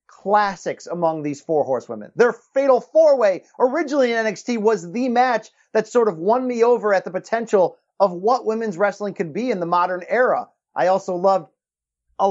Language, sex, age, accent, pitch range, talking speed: English, male, 30-49, American, 185-225 Hz, 185 wpm